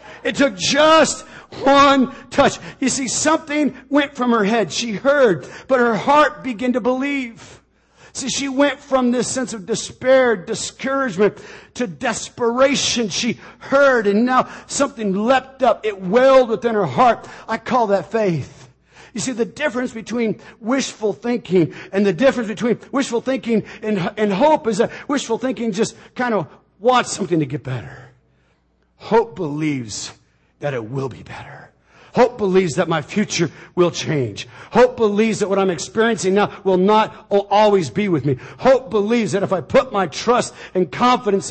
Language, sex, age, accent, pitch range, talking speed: English, male, 50-69, American, 200-265 Hz, 160 wpm